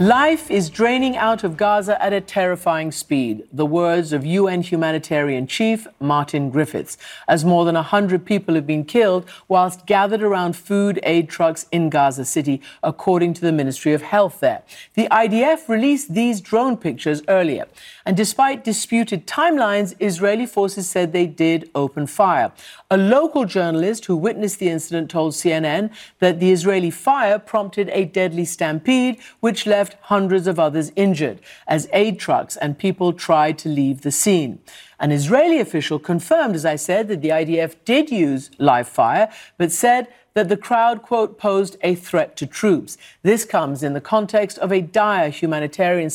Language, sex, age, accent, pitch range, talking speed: English, female, 50-69, British, 160-210 Hz, 165 wpm